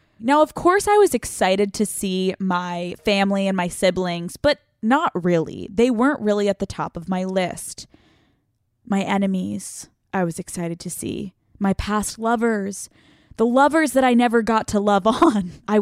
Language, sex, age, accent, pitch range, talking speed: English, female, 20-39, American, 180-235 Hz, 170 wpm